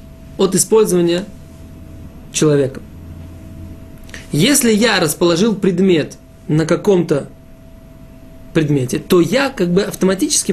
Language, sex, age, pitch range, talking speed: Russian, male, 20-39, 165-215 Hz, 85 wpm